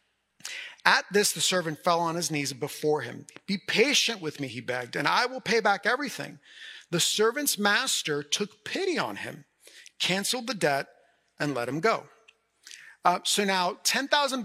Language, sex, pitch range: English, male, 165-240 Hz